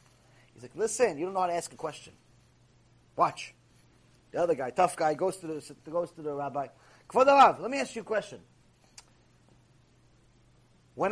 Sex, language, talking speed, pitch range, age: male, English, 160 wpm, 155-250 Hz, 30-49